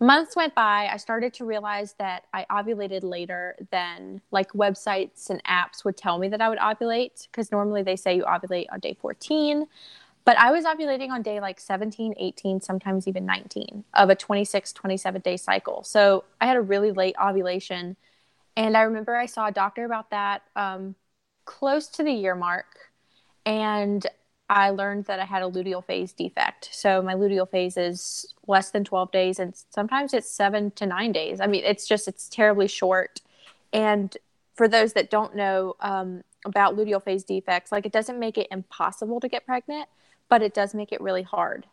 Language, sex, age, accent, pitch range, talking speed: English, female, 20-39, American, 190-215 Hz, 190 wpm